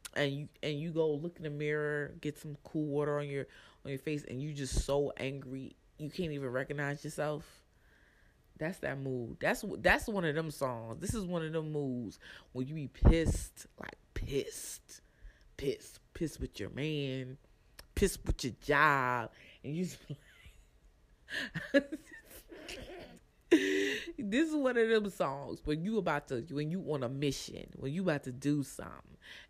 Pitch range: 130-165 Hz